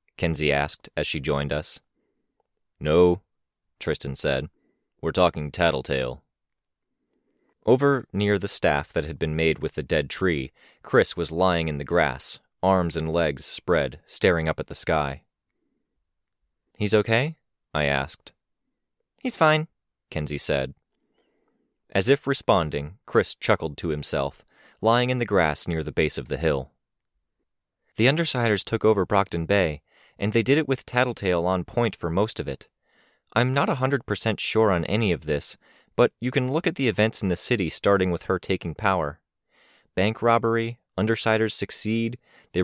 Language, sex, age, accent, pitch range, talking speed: English, male, 20-39, American, 85-115 Hz, 155 wpm